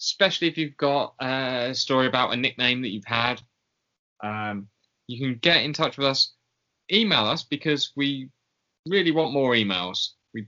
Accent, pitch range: British, 115-155 Hz